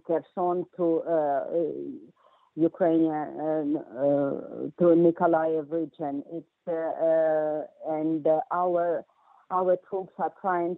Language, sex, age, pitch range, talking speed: English, female, 50-69, 155-175 Hz, 110 wpm